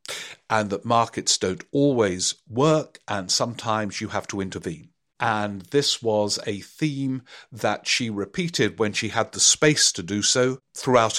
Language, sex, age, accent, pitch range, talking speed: English, male, 50-69, British, 95-130 Hz, 155 wpm